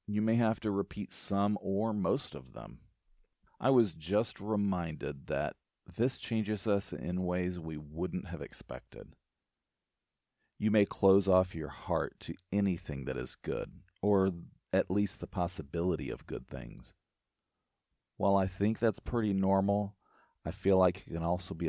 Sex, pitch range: male, 85-105 Hz